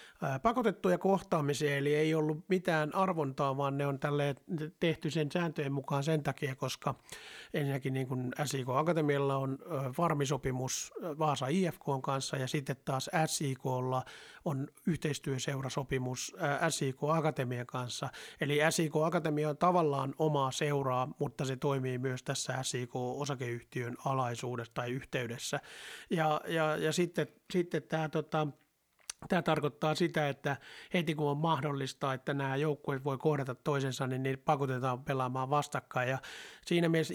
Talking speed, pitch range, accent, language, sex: 130 wpm, 135-160 Hz, native, Finnish, male